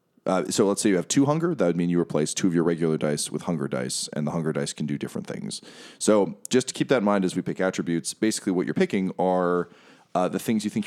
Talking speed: 275 wpm